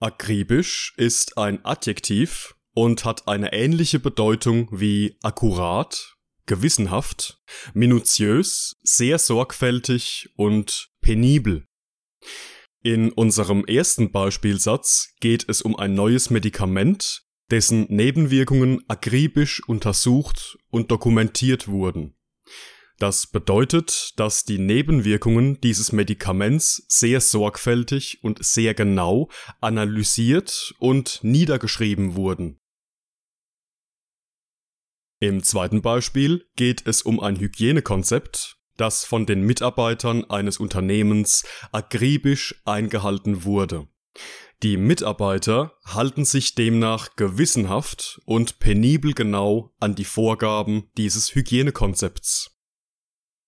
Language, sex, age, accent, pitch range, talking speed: German, male, 20-39, German, 105-125 Hz, 90 wpm